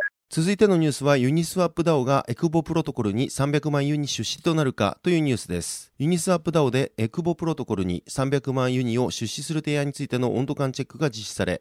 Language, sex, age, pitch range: Japanese, male, 30-49, 115-155 Hz